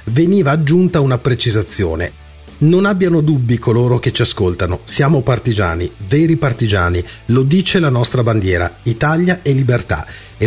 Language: Italian